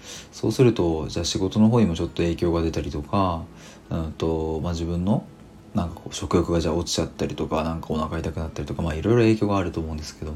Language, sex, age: Japanese, male, 40-59